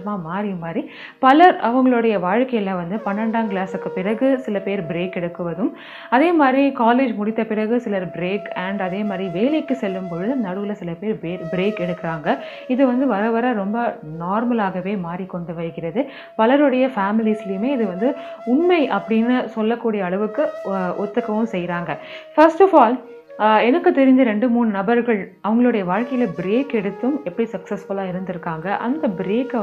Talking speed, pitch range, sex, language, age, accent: 130 wpm, 195-255 Hz, female, Tamil, 30-49, native